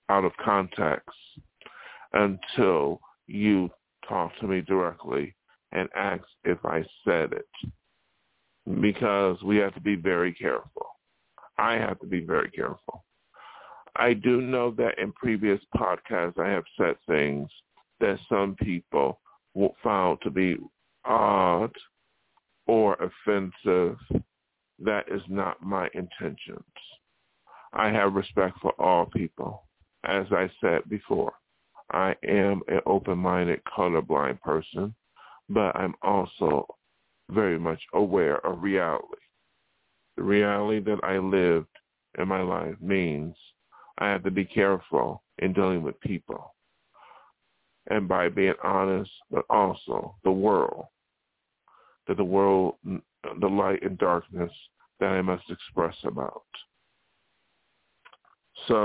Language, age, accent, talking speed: English, 50-69, American, 120 wpm